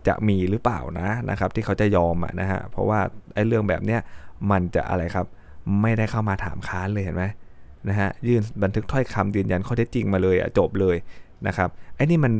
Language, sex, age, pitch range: Thai, male, 20-39, 95-115 Hz